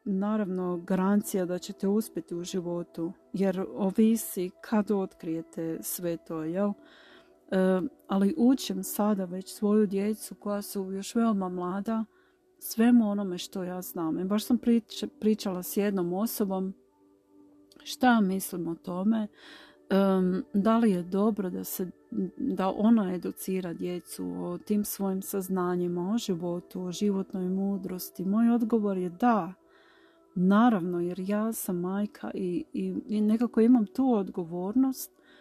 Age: 40-59